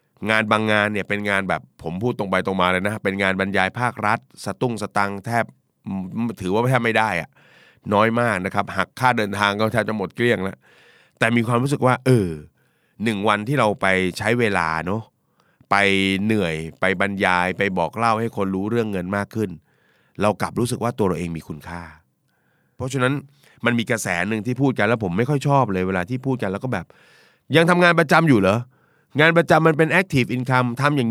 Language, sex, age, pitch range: Thai, male, 20-39, 100-135 Hz